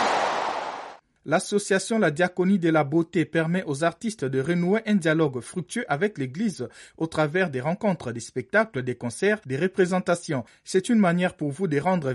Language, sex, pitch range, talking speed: French, male, 135-195 Hz, 165 wpm